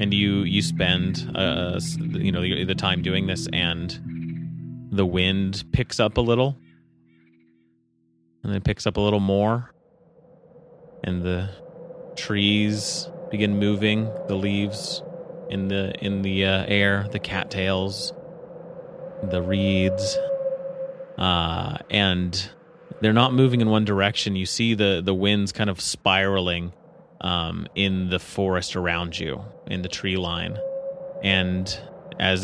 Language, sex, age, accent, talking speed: English, male, 30-49, American, 130 wpm